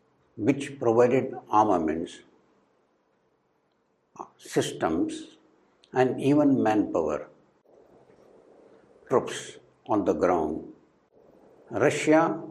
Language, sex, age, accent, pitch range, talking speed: English, male, 60-79, Indian, 120-155 Hz, 60 wpm